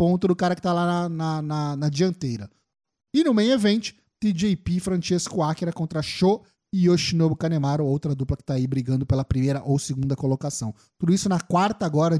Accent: Brazilian